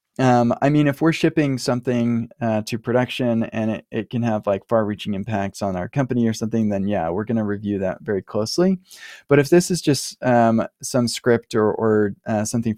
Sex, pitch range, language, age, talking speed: male, 105-125 Hz, English, 20-39, 210 wpm